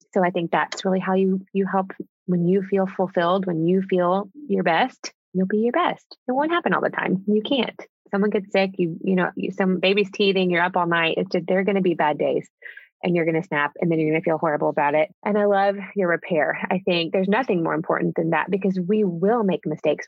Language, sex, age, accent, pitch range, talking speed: English, female, 20-39, American, 175-205 Hz, 250 wpm